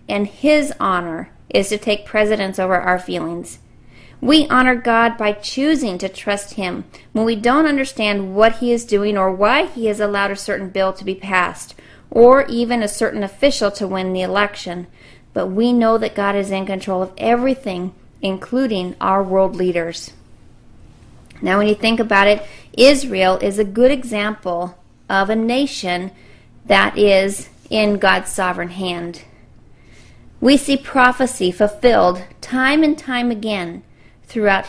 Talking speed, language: 155 wpm, English